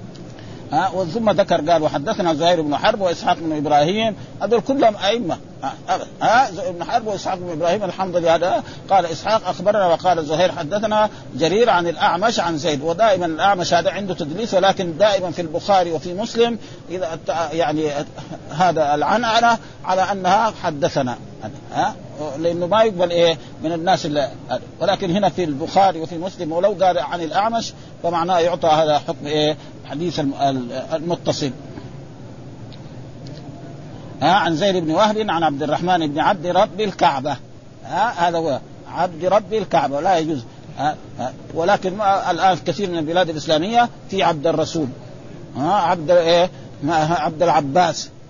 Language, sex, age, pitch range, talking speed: Arabic, male, 50-69, 150-195 Hz, 135 wpm